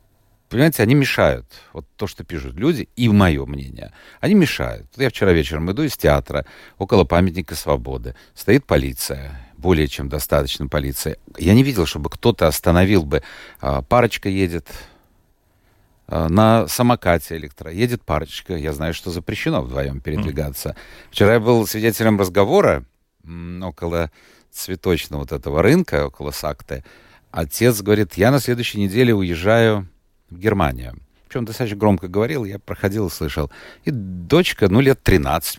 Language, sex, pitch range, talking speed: Russian, male, 75-110 Hz, 140 wpm